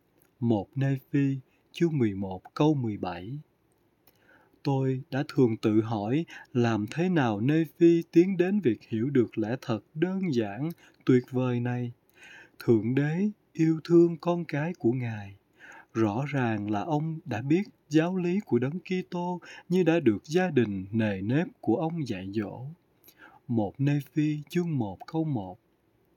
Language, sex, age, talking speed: Vietnamese, male, 20-39, 155 wpm